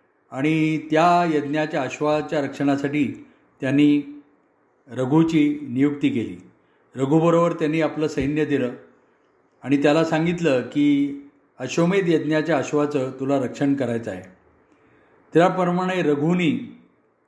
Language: Marathi